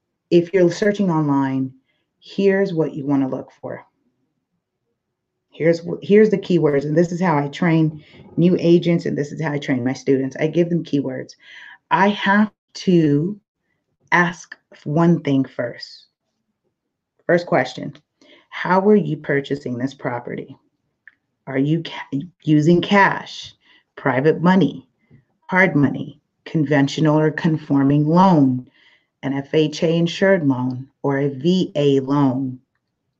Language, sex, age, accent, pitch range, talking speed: English, female, 30-49, American, 140-175 Hz, 125 wpm